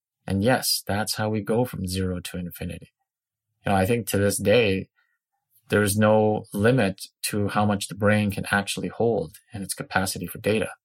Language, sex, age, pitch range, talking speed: English, male, 30-49, 95-125 Hz, 190 wpm